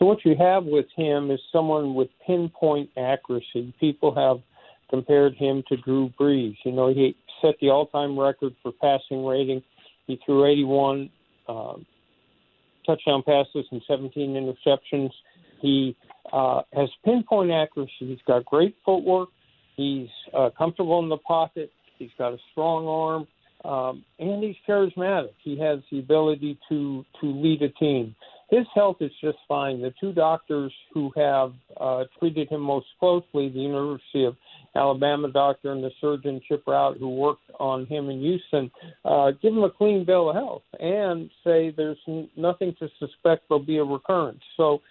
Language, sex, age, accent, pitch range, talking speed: English, male, 50-69, American, 135-165 Hz, 160 wpm